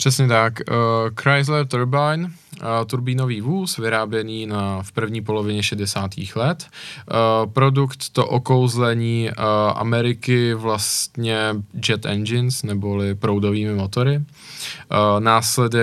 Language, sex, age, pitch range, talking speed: Czech, male, 20-39, 110-130 Hz, 105 wpm